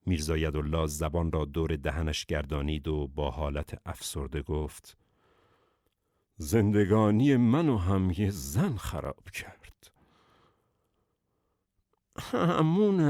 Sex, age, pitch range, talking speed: male, 60-79, 95-130 Hz, 95 wpm